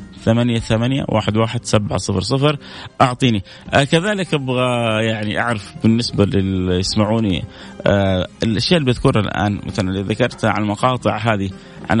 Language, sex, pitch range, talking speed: Arabic, male, 110-150 Hz, 120 wpm